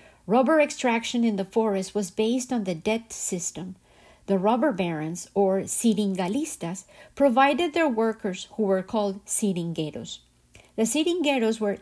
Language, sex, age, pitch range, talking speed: Spanish, female, 50-69, 195-250 Hz, 130 wpm